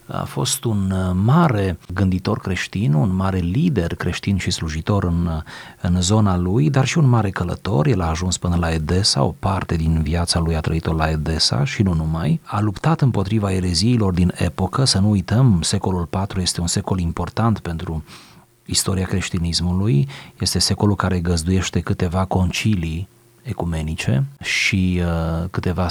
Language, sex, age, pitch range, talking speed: Romanian, male, 30-49, 90-110 Hz, 155 wpm